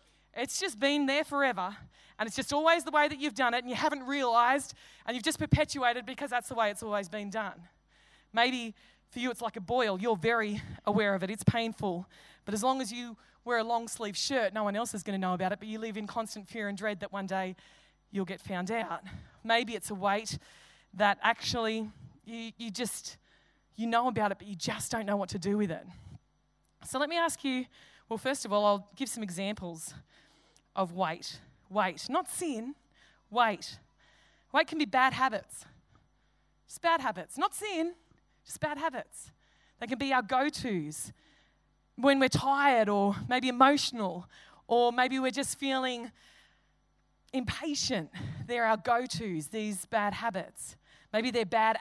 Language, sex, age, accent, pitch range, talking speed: English, female, 20-39, Australian, 200-260 Hz, 185 wpm